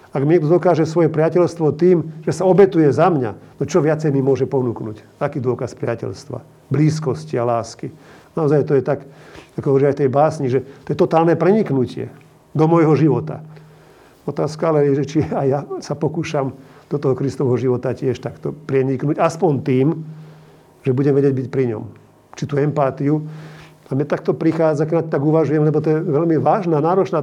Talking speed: 180 wpm